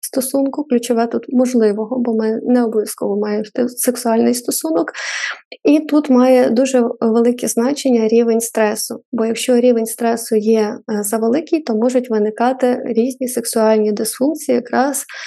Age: 20-39